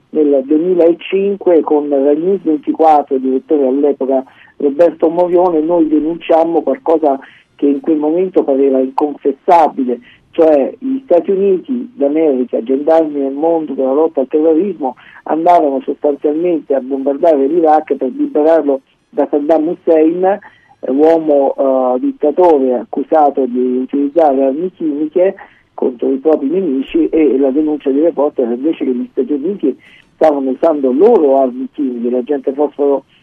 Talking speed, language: 125 wpm, Italian